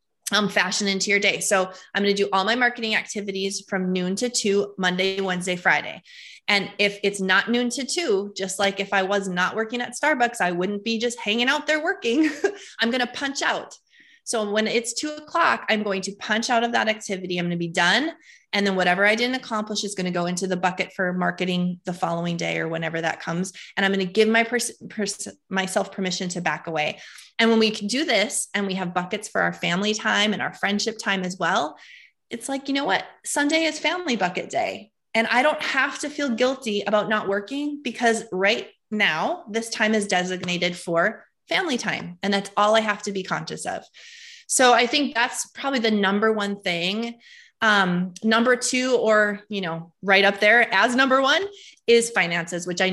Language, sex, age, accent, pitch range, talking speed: English, female, 20-39, American, 185-235 Hz, 210 wpm